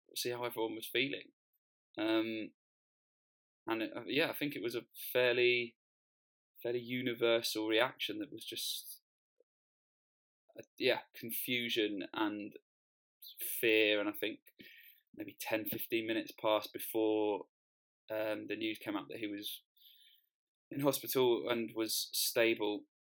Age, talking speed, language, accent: 10-29, 125 wpm, English, British